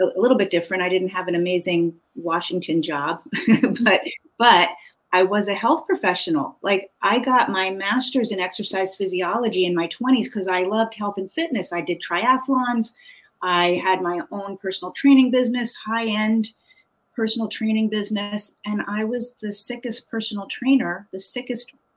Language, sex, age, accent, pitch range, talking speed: English, female, 40-59, American, 180-230 Hz, 160 wpm